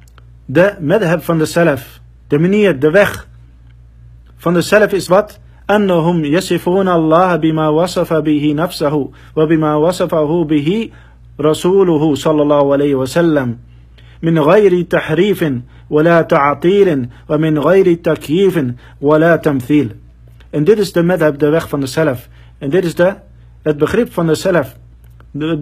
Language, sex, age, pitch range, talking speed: Dutch, male, 50-69, 115-180 Hz, 140 wpm